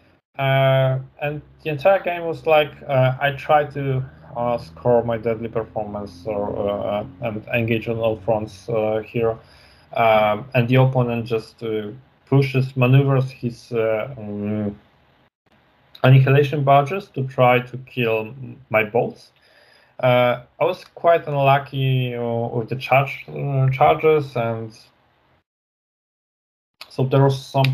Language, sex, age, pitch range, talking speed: English, male, 20-39, 110-130 Hz, 125 wpm